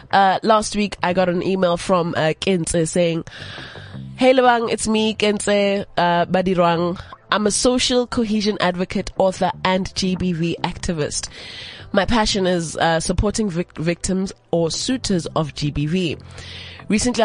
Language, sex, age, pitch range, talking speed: English, female, 20-39, 155-215 Hz, 135 wpm